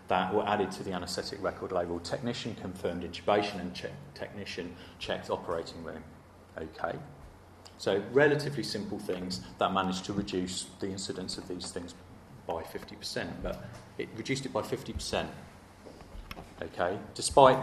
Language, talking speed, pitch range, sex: English, 140 wpm, 95-110 Hz, male